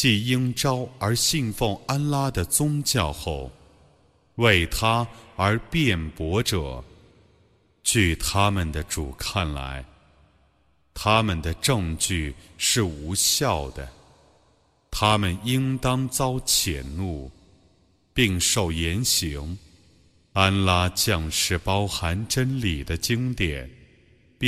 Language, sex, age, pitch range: Arabic, male, 30-49, 80-110 Hz